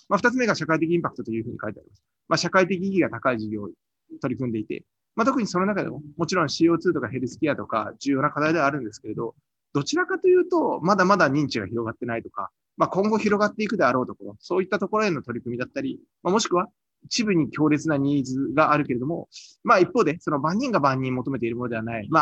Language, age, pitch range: Japanese, 20-39, 130-190 Hz